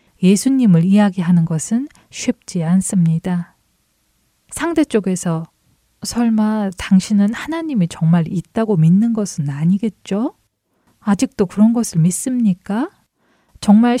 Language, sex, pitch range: Korean, female, 180-230 Hz